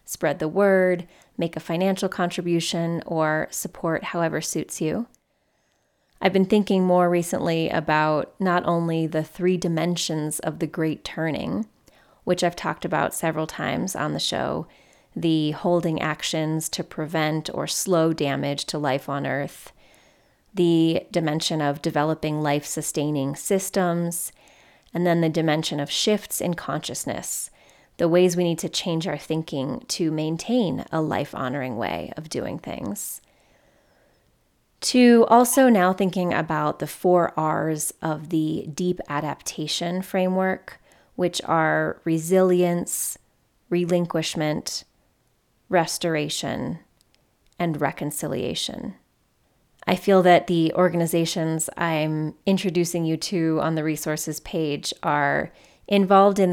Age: 20-39